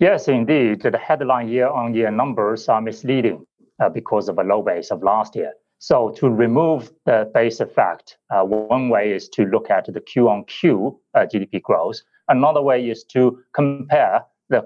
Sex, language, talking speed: male, English, 165 wpm